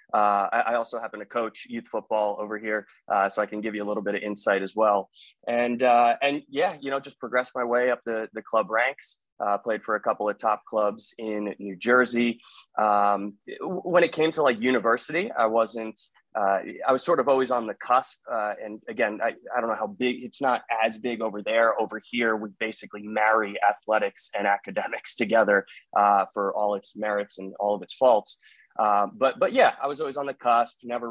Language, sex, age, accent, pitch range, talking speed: English, male, 20-39, American, 105-125 Hz, 215 wpm